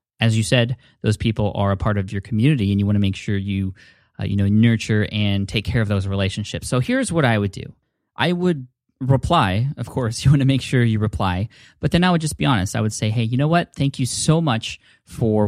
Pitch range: 100-120 Hz